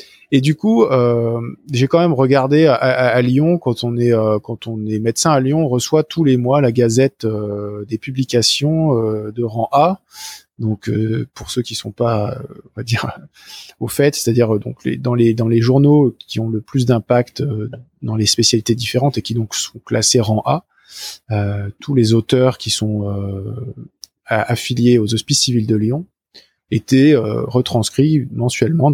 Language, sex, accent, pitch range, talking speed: French, male, French, 110-130 Hz, 195 wpm